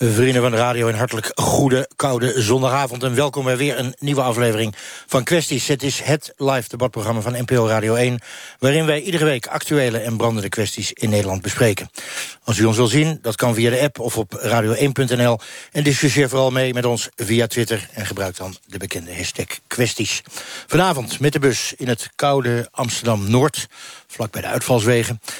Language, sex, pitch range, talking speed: Dutch, male, 105-130 Hz, 185 wpm